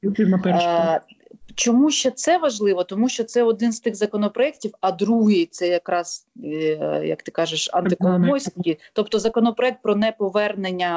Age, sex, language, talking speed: 30-49, female, Ukrainian, 130 wpm